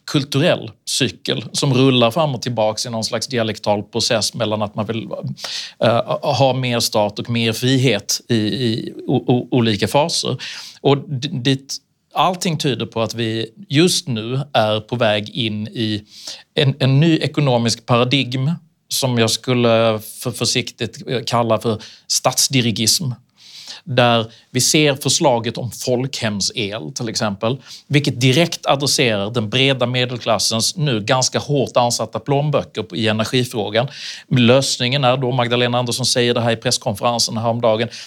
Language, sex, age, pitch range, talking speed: Swedish, male, 40-59, 115-140 Hz, 130 wpm